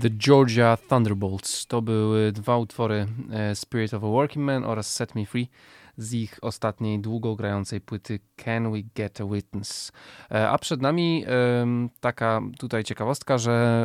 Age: 20-39